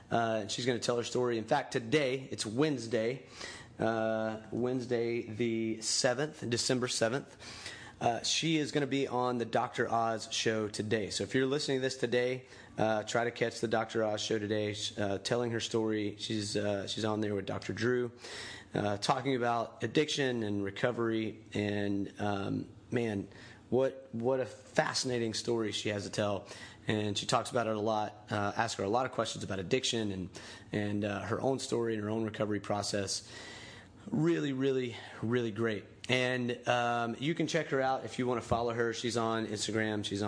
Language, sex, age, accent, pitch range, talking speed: English, male, 30-49, American, 105-125 Hz, 185 wpm